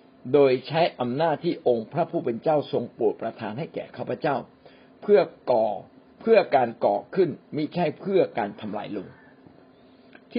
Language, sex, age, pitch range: Thai, male, 60-79, 120-170 Hz